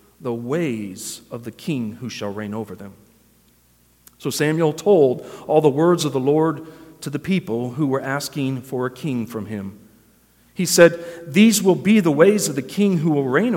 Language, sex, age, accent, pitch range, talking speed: English, male, 40-59, American, 115-175 Hz, 190 wpm